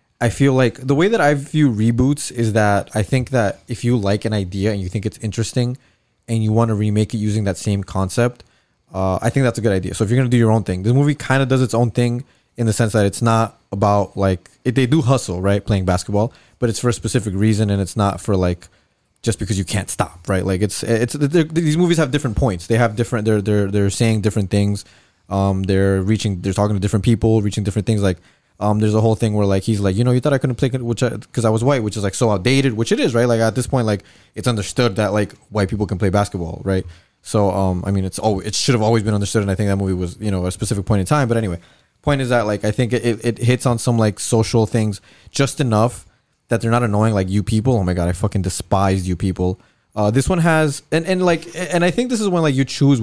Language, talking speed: English, 270 wpm